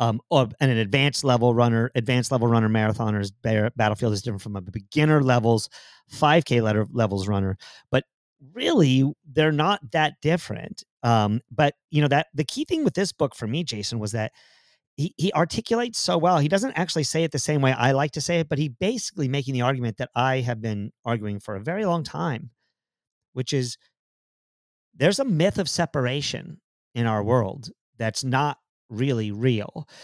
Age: 40-59